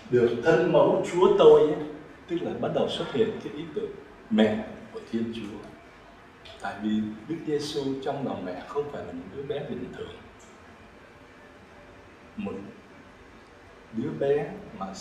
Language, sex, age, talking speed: Vietnamese, male, 60-79, 150 wpm